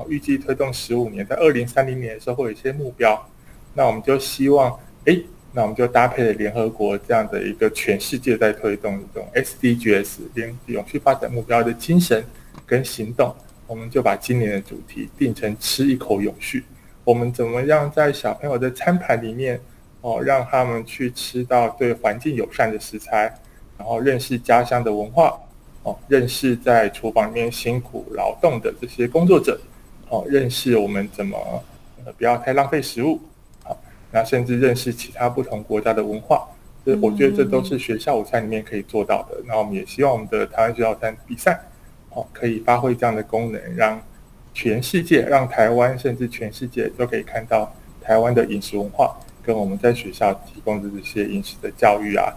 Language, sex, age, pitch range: Chinese, male, 20-39, 110-130 Hz